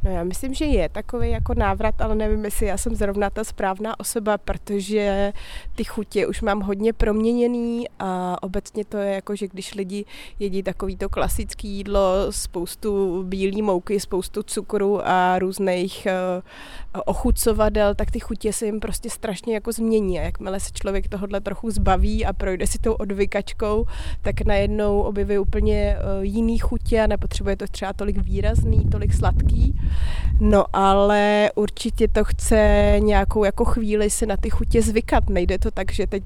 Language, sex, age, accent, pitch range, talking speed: Czech, female, 20-39, native, 195-215 Hz, 160 wpm